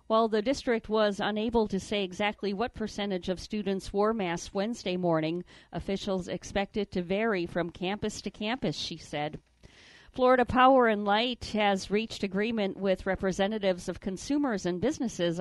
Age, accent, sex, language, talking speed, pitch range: 50-69, American, female, English, 155 wpm, 180-210 Hz